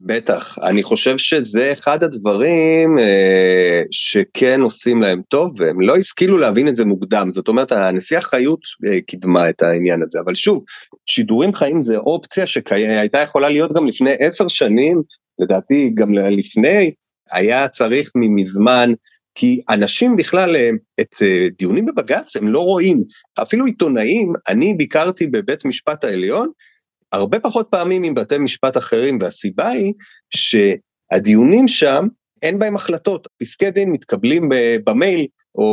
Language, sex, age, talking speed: Hebrew, male, 30-49, 135 wpm